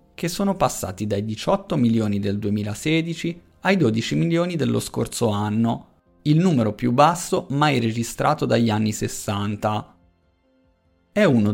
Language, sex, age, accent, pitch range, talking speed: Italian, male, 30-49, native, 110-150 Hz, 130 wpm